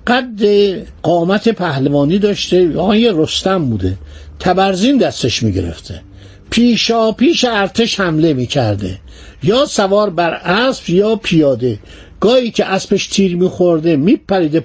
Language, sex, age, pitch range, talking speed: Persian, male, 60-79, 155-220 Hz, 115 wpm